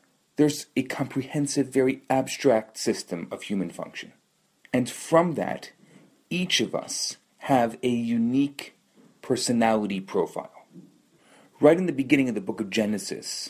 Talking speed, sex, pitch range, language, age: 130 wpm, male, 120-160 Hz, English, 40-59